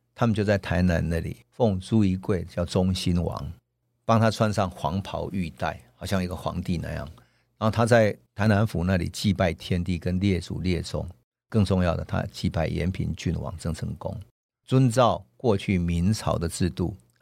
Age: 50-69